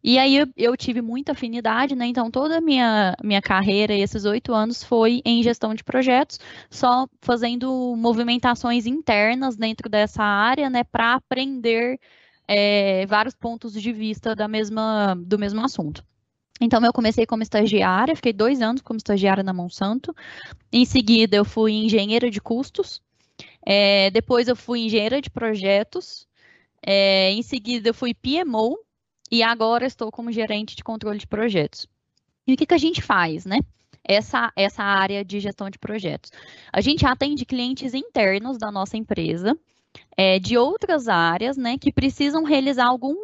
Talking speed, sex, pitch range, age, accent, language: 150 wpm, female, 210-260 Hz, 10-29, Brazilian, Portuguese